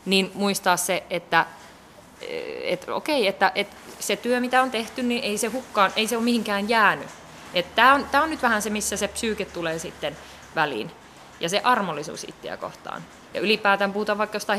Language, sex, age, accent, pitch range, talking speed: Finnish, female, 20-39, native, 180-235 Hz, 180 wpm